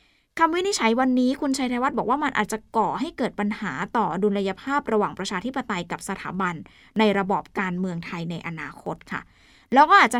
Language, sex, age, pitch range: Thai, female, 20-39, 200-265 Hz